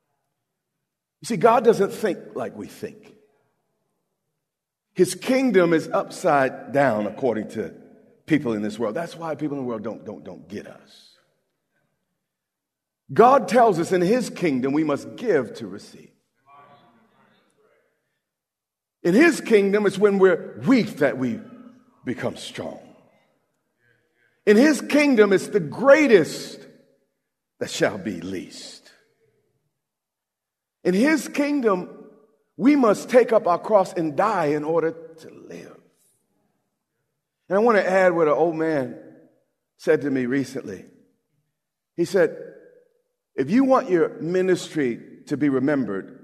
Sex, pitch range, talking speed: male, 150-235 Hz, 130 wpm